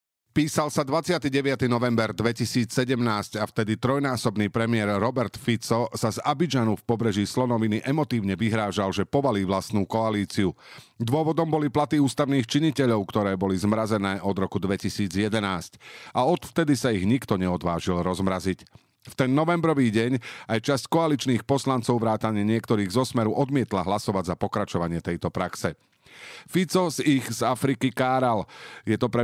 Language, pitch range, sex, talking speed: Slovak, 100-130 Hz, male, 135 wpm